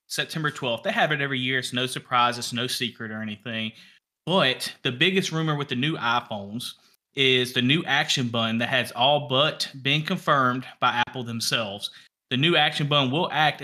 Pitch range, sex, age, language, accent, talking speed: 120-145 Hz, male, 30-49, English, American, 190 wpm